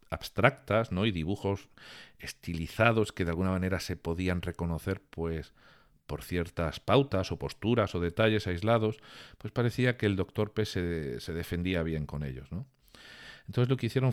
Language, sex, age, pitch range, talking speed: Spanish, male, 50-69, 75-100 Hz, 160 wpm